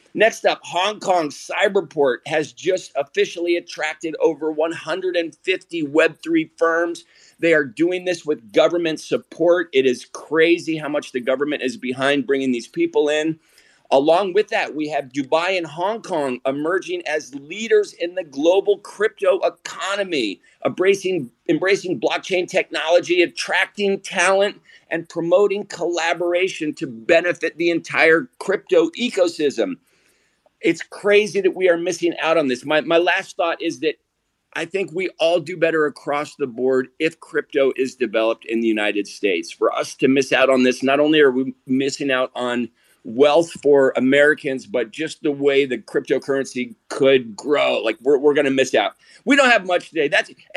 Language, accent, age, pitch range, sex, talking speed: English, American, 50-69, 140-190 Hz, male, 160 wpm